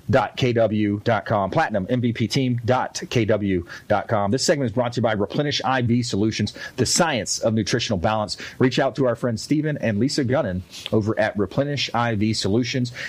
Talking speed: 140 wpm